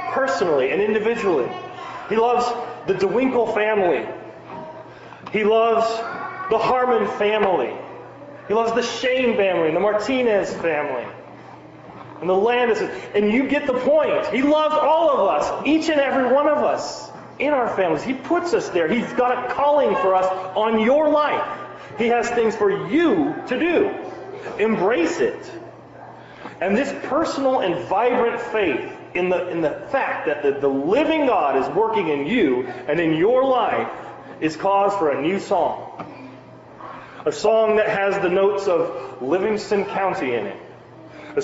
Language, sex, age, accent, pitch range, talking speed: English, male, 30-49, American, 205-335 Hz, 155 wpm